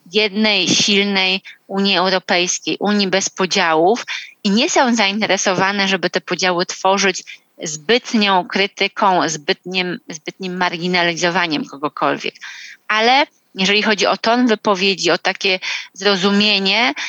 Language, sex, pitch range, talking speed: Polish, female, 185-225 Hz, 105 wpm